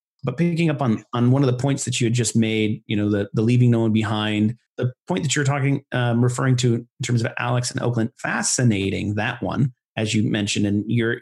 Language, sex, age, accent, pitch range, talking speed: English, male, 30-49, American, 110-130 Hz, 235 wpm